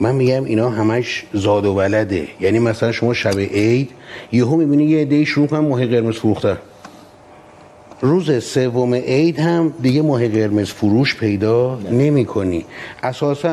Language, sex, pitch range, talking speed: Persian, male, 115-150 Hz, 150 wpm